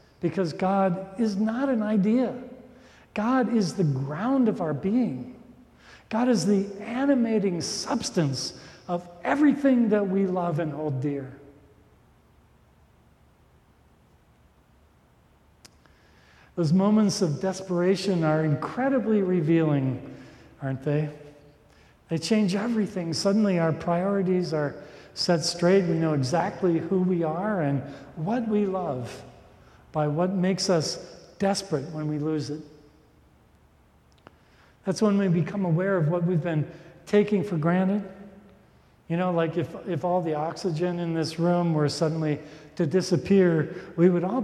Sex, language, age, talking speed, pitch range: male, English, 50-69, 125 wpm, 150-195 Hz